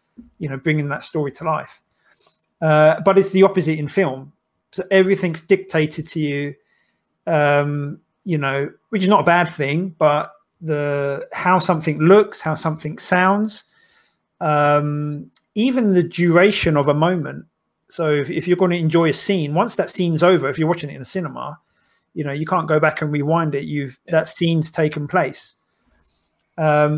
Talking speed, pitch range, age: 175 wpm, 145-180 Hz, 30-49